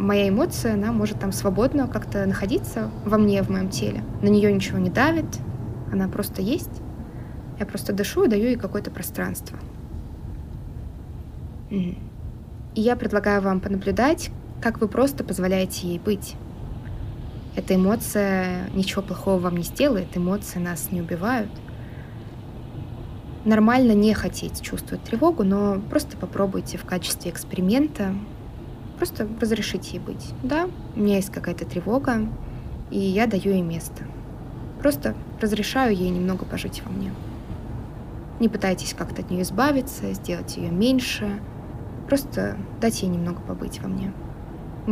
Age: 20-39